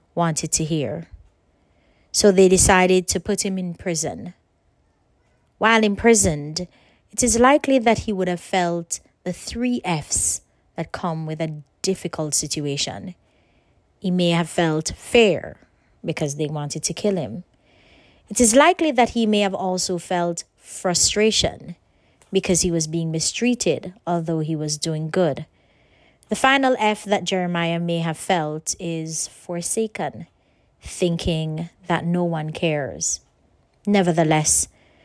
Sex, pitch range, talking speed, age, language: female, 160-195 Hz, 130 wpm, 30-49, English